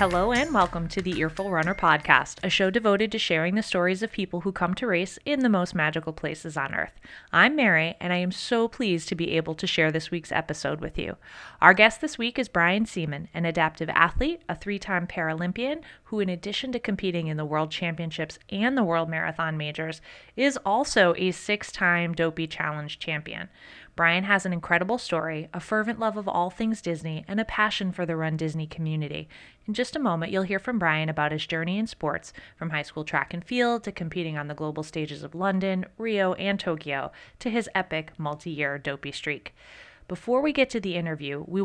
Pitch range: 160-215 Hz